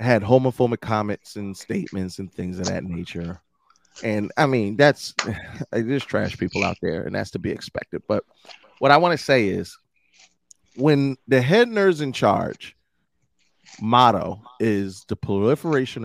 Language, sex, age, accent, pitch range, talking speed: English, male, 30-49, American, 100-145 Hz, 155 wpm